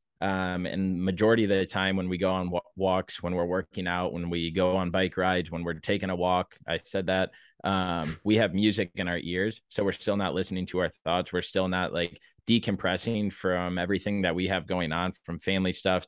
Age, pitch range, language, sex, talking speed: 20-39, 85-100 Hz, English, male, 220 wpm